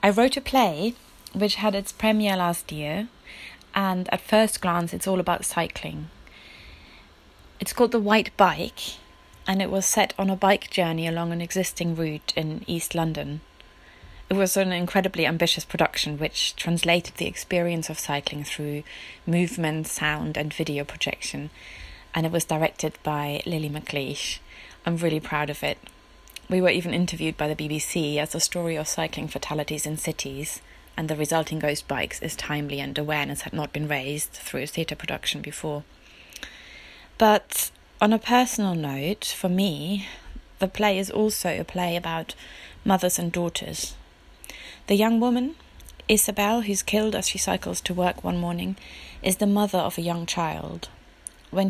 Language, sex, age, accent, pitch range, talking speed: English, female, 30-49, British, 150-195 Hz, 160 wpm